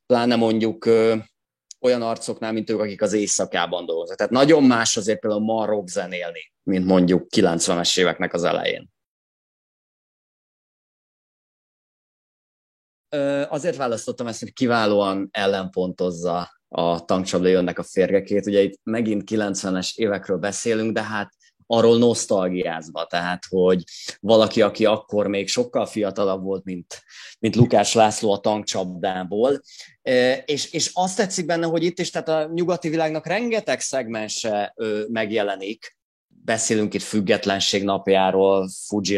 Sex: male